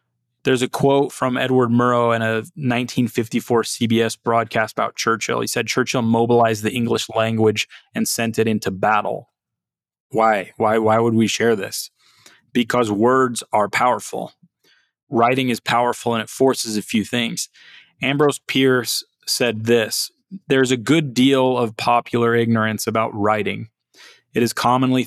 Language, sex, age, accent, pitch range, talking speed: English, male, 20-39, American, 110-125 Hz, 145 wpm